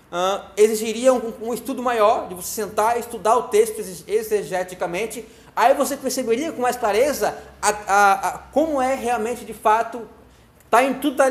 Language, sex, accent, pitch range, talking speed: Portuguese, male, Brazilian, 180-245 Hz, 175 wpm